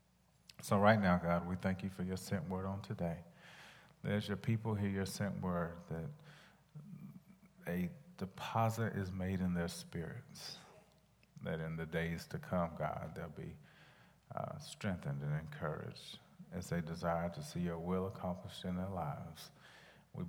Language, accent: English, American